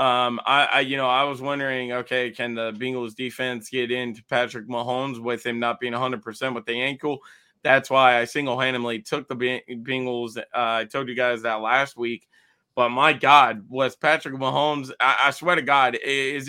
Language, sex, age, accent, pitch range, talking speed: English, male, 20-39, American, 125-150 Hz, 190 wpm